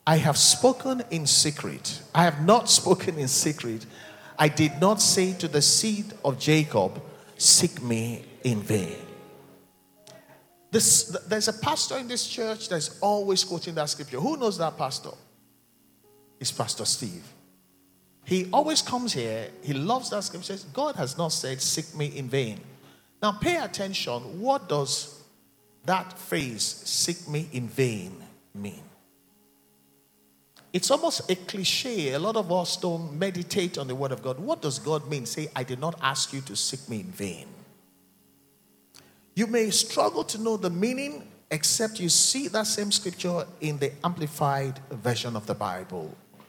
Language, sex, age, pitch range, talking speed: English, male, 50-69, 130-195 Hz, 160 wpm